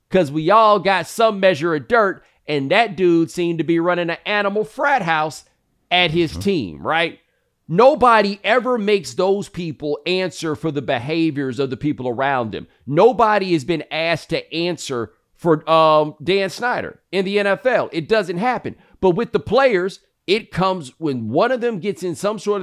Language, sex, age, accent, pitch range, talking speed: English, male, 40-59, American, 150-200 Hz, 180 wpm